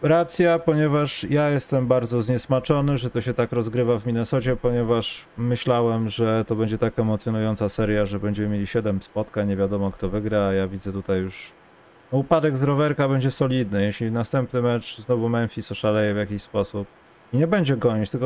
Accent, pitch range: native, 105-145 Hz